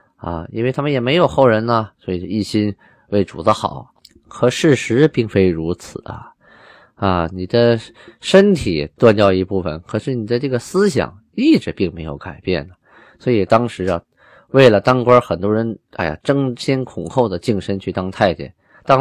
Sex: male